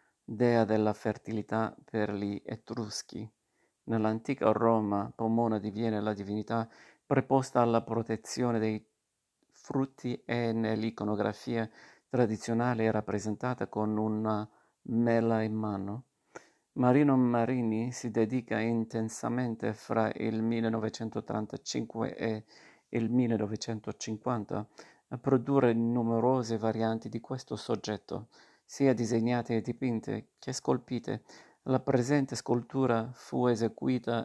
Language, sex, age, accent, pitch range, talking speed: Italian, male, 50-69, native, 110-125 Hz, 100 wpm